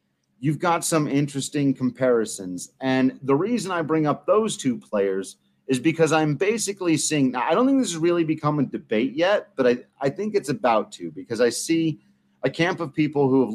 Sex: male